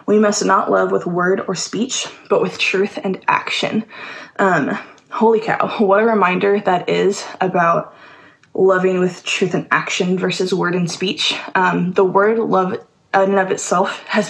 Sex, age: female, 20-39